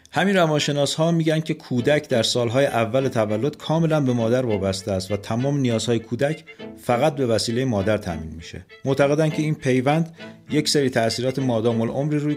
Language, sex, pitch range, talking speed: Persian, male, 105-140 Hz, 165 wpm